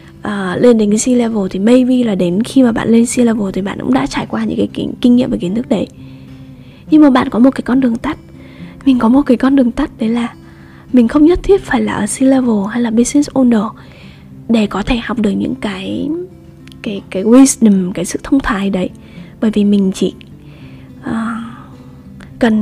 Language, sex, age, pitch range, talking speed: Vietnamese, female, 10-29, 205-260 Hz, 200 wpm